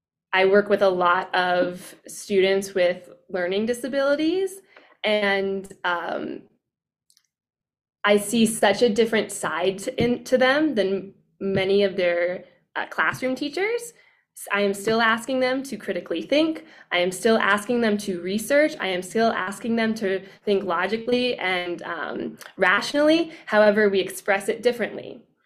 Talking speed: 140 wpm